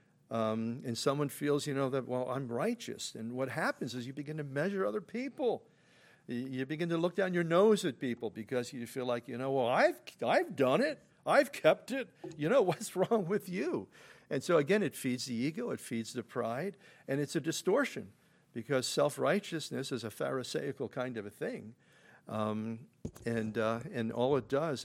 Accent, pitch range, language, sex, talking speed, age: American, 110-145 Hz, English, male, 195 wpm, 50-69